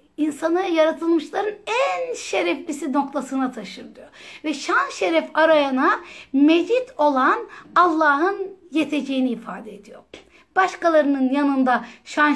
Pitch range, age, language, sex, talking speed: 260-345 Hz, 60-79, Turkish, female, 95 wpm